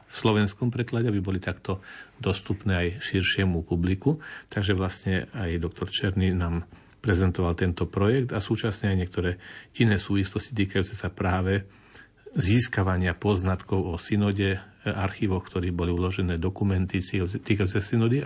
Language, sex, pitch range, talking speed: Slovak, male, 95-115 Hz, 130 wpm